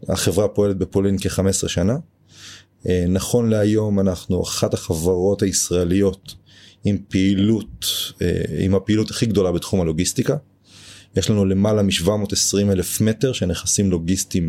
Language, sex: Hebrew, male